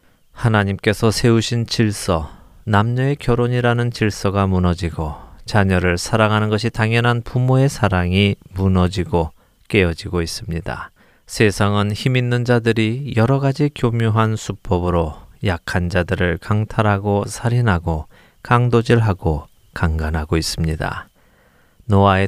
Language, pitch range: Korean, 80-115 Hz